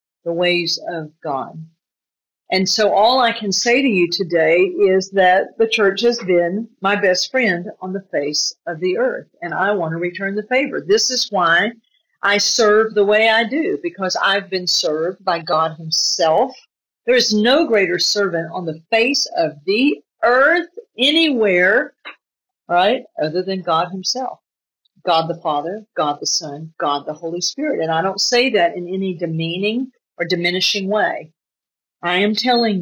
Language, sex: English, female